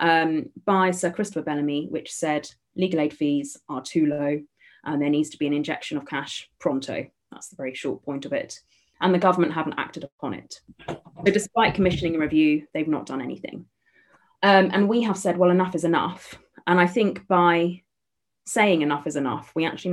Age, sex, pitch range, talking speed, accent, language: 20-39, female, 150-185 Hz, 195 wpm, British, English